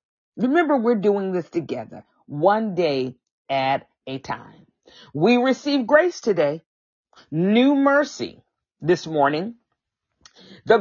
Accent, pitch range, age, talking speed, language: American, 170-230 Hz, 40-59, 105 wpm, English